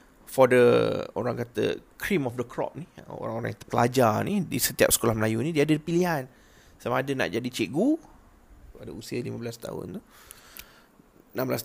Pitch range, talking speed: 120-175 Hz, 165 wpm